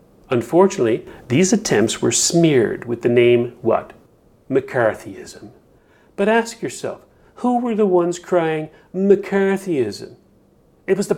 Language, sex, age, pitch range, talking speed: English, male, 40-59, 130-195 Hz, 120 wpm